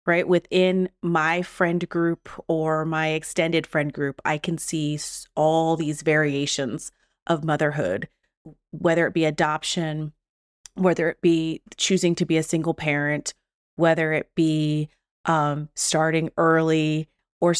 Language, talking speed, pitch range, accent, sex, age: English, 130 wpm, 155-175 Hz, American, female, 30-49